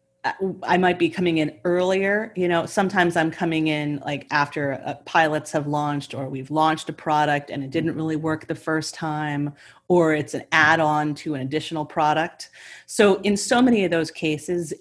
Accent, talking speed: American, 190 wpm